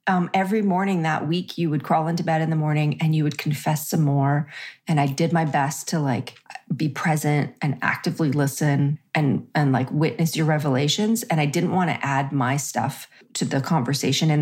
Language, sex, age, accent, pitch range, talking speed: English, female, 30-49, American, 140-175 Hz, 205 wpm